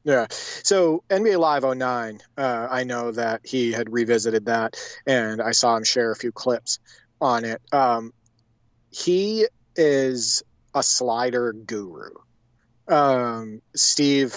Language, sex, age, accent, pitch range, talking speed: English, male, 30-49, American, 115-135 Hz, 130 wpm